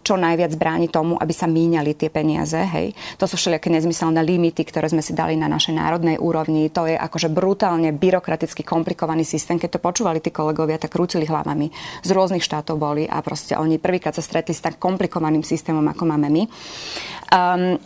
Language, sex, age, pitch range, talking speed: Slovak, female, 20-39, 160-180 Hz, 190 wpm